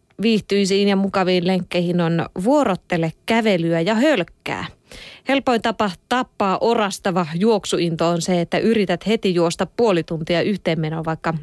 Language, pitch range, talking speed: Finnish, 180-230 Hz, 120 wpm